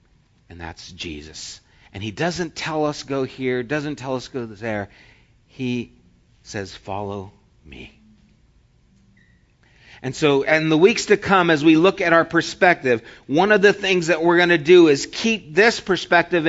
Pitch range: 110-160 Hz